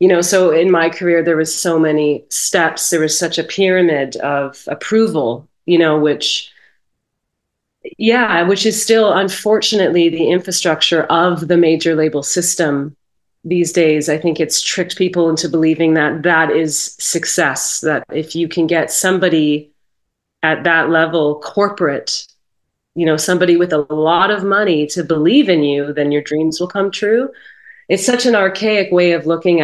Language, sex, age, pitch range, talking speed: English, female, 30-49, 150-175 Hz, 165 wpm